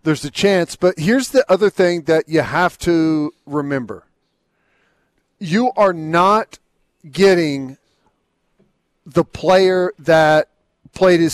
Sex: male